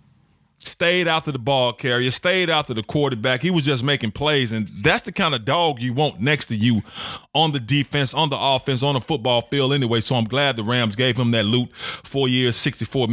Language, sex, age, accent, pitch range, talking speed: English, male, 30-49, American, 115-150 Hz, 220 wpm